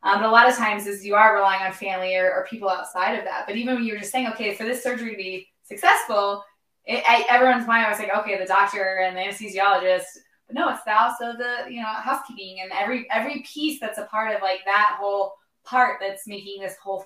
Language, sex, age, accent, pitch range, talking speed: English, female, 20-39, American, 195-250 Hz, 245 wpm